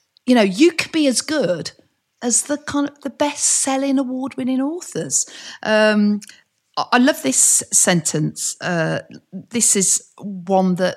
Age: 40-59